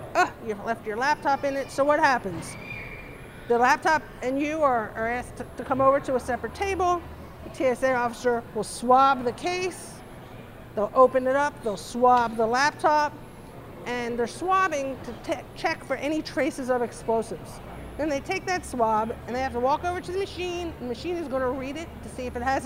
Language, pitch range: English, 245-340 Hz